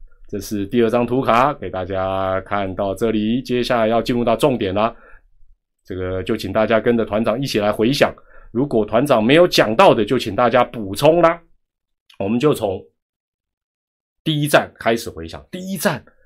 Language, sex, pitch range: Chinese, male, 100-170 Hz